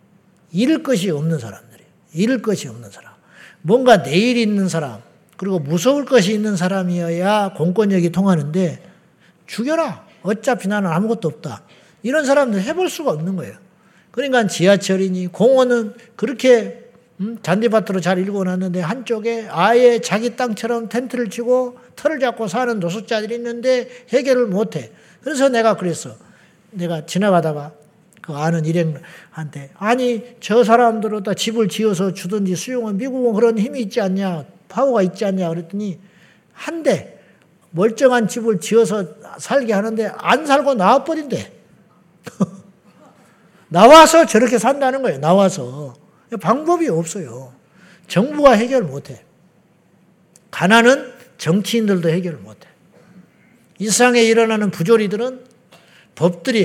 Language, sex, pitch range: Korean, male, 180-235 Hz